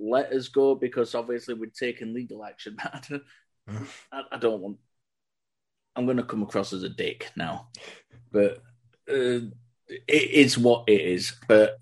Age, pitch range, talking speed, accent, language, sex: 30-49, 100-135 Hz, 150 wpm, British, English, male